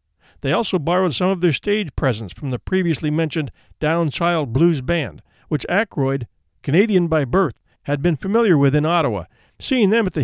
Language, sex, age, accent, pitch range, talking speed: English, male, 50-69, American, 135-190 Hz, 175 wpm